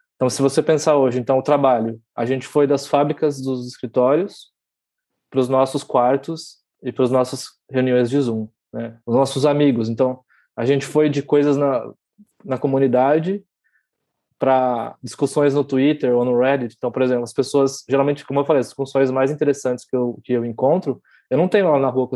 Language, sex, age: Portuguese, male, 20-39